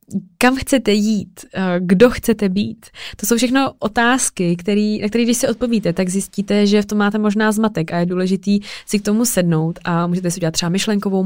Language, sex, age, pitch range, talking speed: Czech, female, 20-39, 180-210 Hz, 195 wpm